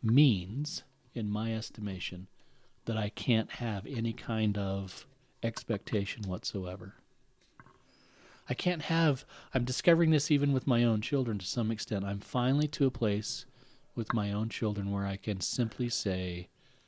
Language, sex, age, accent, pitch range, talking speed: English, male, 40-59, American, 105-130 Hz, 145 wpm